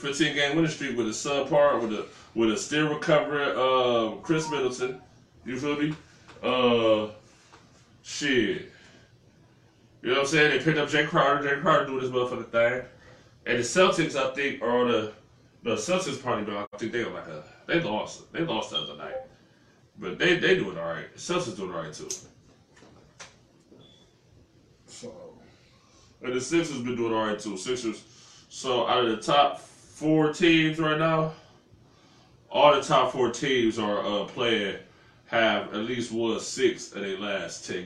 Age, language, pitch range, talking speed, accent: 20-39, English, 115-145 Hz, 170 wpm, American